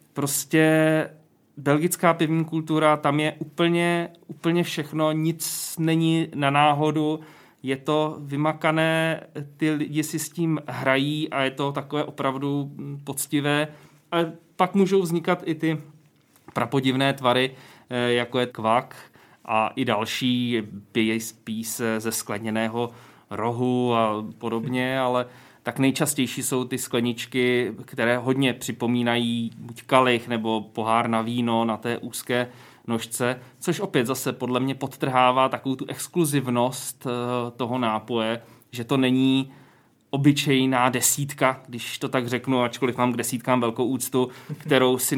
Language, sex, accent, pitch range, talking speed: Czech, male, native, 125-150 Hz, 130 wpm